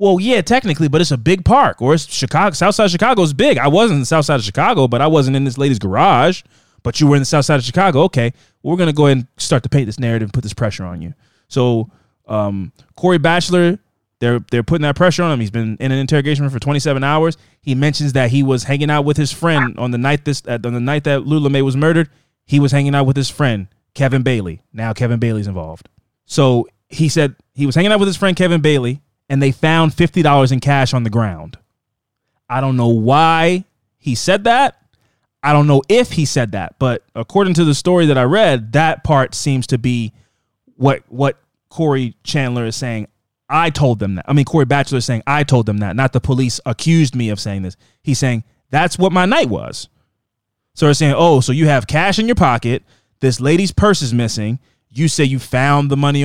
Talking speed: 235 wpm